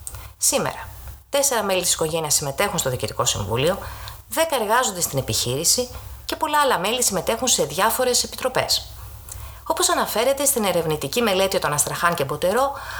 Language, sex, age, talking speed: Greek, female, 30-49, 140 wpm